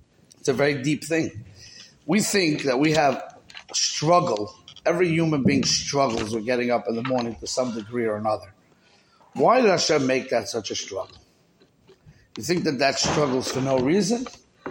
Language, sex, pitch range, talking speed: English, male, 120-160 Hz, 175 wpm